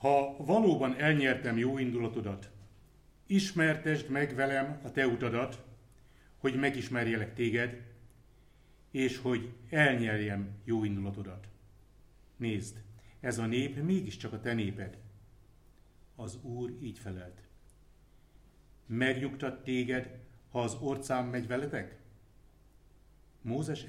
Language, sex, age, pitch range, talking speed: Hungarian, male, 60-79, 105-130 Hz, 100 wpm